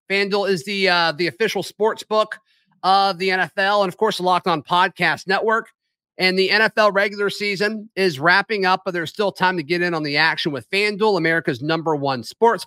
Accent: American